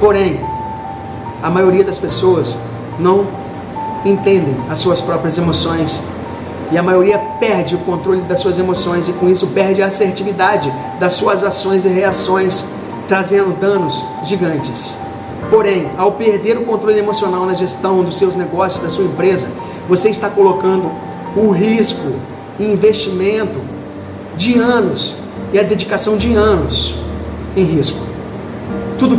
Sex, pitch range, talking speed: male, 155-195 Hz, 135 wpm